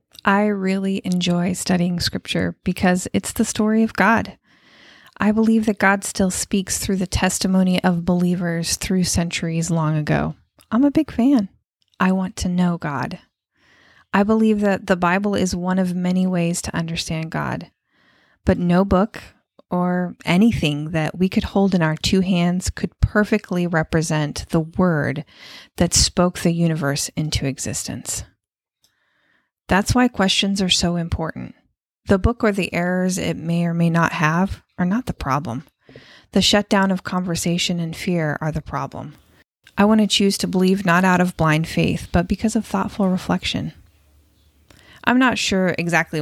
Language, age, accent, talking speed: English, 30-49, American, 160 wpm